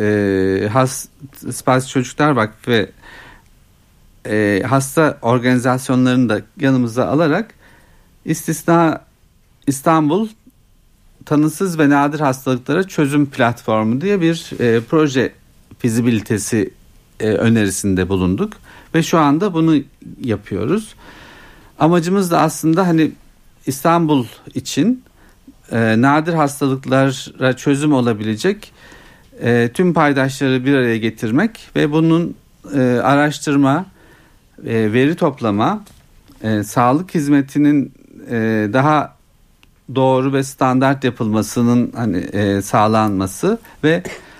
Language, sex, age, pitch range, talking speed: Turkish, male, 60-79, 115-150 Hz, 90 wpm